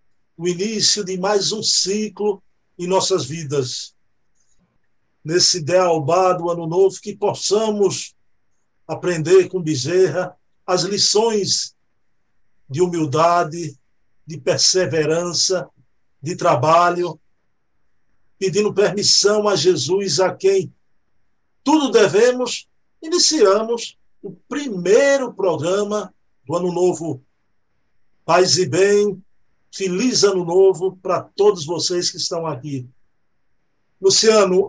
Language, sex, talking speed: Portuguese, male, 95 wpm